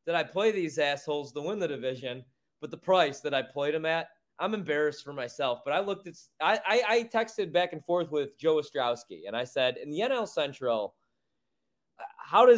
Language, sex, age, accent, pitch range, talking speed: English, male, 20-39, American, 125-170 Hz, 200 wpm